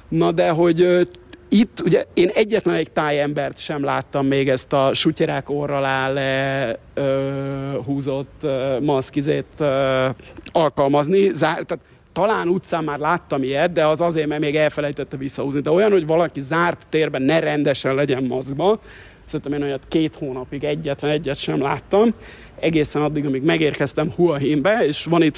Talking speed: 155 wpm